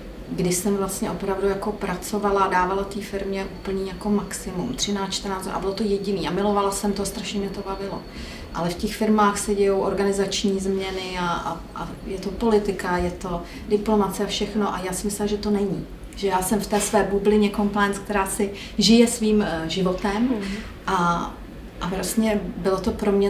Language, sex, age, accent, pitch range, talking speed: Czech, female, 40-59, native, 185-210 Hz, 185 wpm